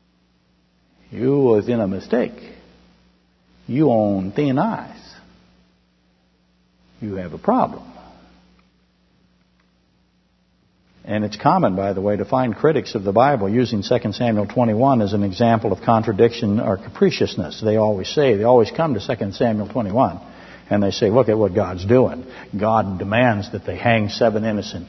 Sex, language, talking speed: male, English, 145 wpm